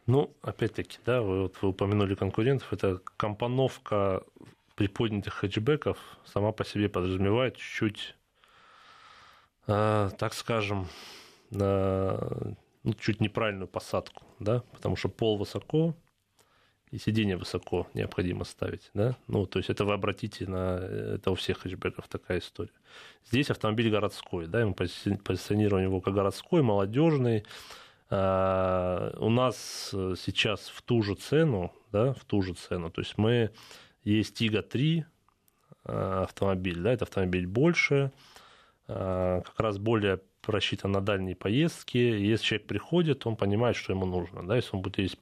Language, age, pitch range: Russian, 20-39, 95-120 Hz